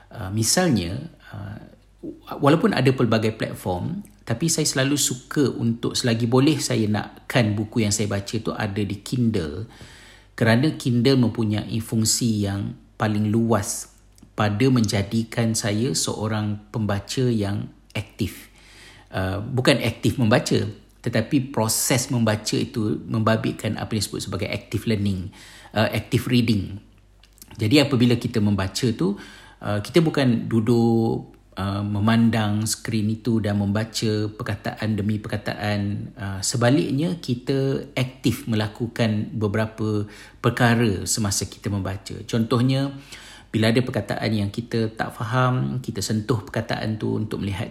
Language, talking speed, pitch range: Malay, 120 wpm, 105-120 Hz